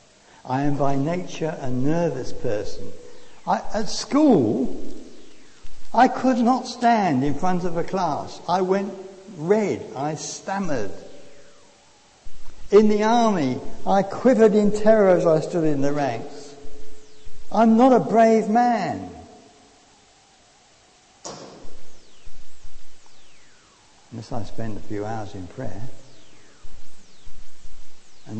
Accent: British